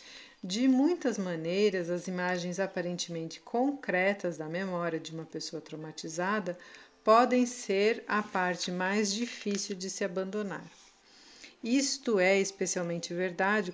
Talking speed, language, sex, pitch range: 115 wpm, Portuguese, female, 180-215 Hz